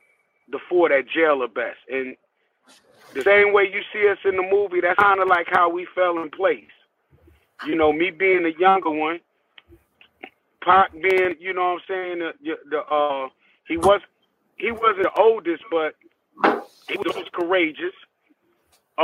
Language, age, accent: English, 30-49, American